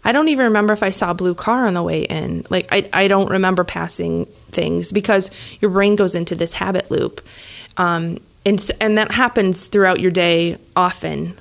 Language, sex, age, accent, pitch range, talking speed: English, female, 30-49, American, 175-205 Hz, 200 wpm